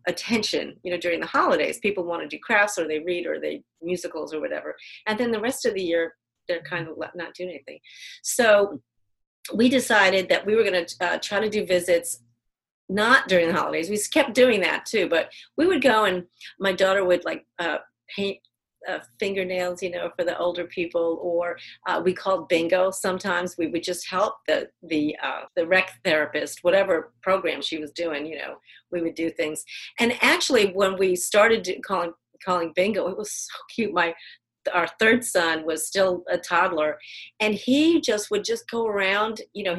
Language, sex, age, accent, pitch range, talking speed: English, female, 40-59, American, 170-215 Hz, 195 wpm